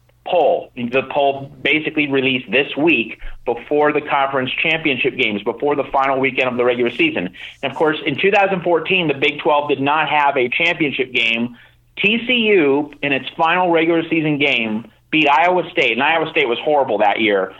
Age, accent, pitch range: 30-49, American, 135-180 Hz